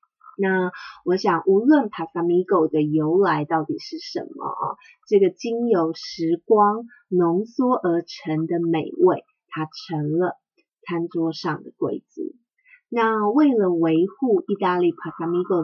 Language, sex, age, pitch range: Chinese, female, 30-49, 165-235 Hz